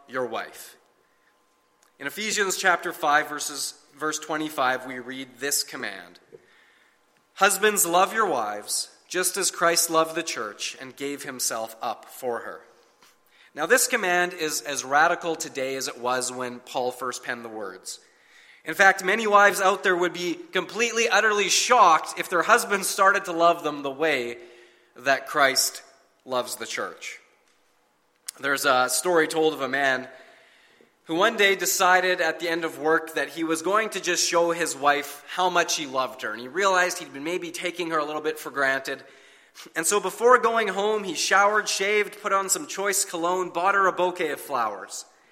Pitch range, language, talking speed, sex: 140-200 Hz, English, 175 wpm, male